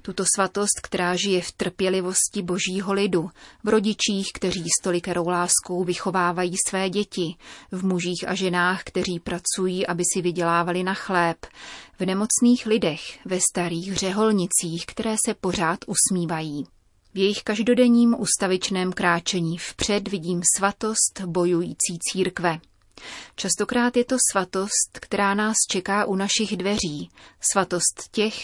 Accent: native